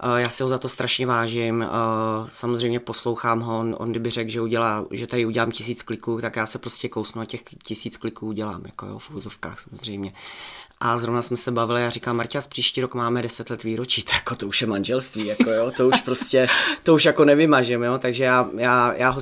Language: Czech